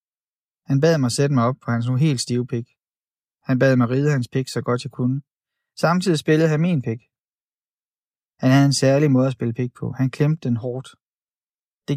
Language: Danish